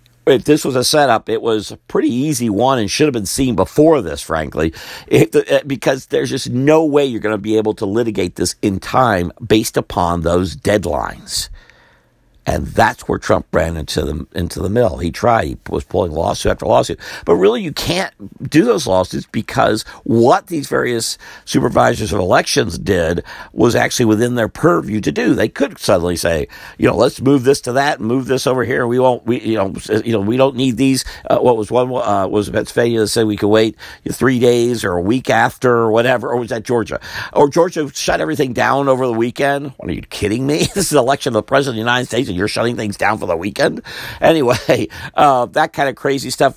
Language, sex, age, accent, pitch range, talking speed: English, male, 50-69, American, 110-140 Hz, 220 wpm